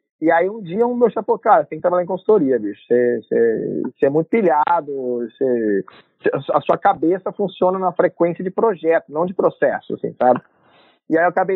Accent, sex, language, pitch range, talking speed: Brazilian, male, Portuguese, 140-200 Hz, 210 wpm